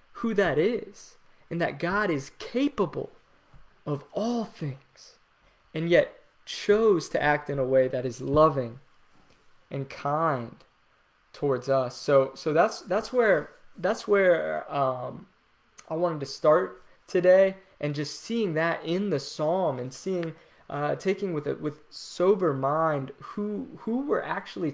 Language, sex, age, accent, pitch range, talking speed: English, male, 20-39, American, 140-170 Hz, 145 wpm